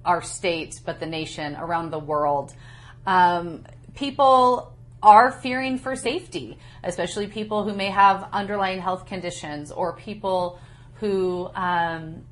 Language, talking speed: English, 125 wpm